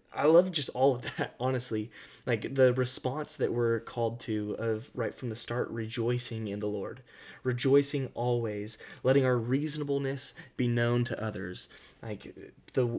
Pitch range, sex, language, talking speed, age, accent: 110-130 Hz, male, English, 155 wpm, 20-39, American